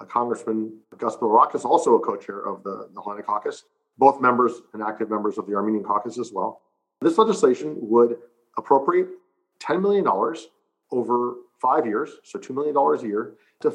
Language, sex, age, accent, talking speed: English, male, 40-59, American, 160 wpm